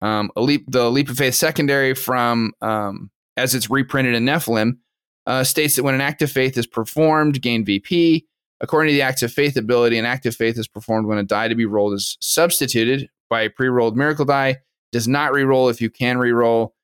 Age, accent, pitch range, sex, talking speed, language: 20-39, American, 110-130 Hz, male, 205 wpm, English